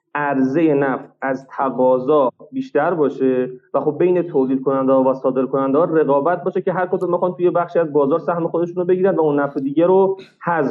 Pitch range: 140-185 Hz